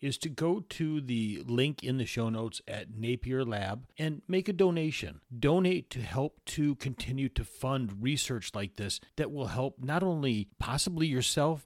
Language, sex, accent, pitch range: English, male, American, 110-140 Hz